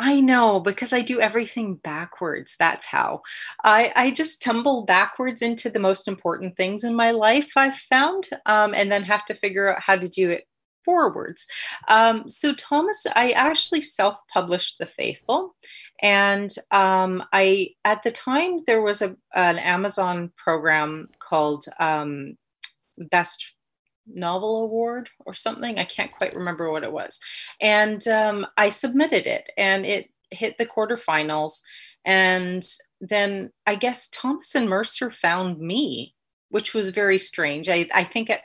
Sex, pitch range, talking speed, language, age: female, 170-230 Hz, 155 wpm, English, 30-49